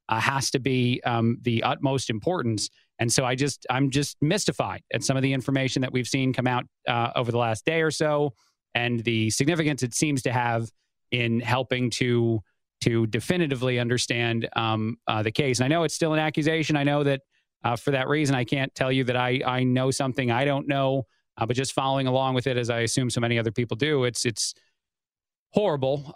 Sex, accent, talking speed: male, American, 215 wpm